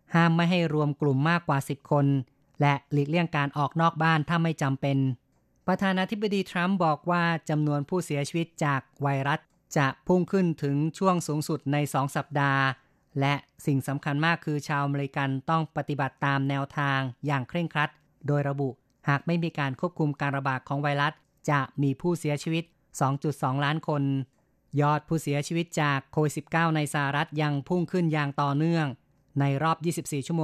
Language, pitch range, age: Thai, 140-165 Hz, 20-39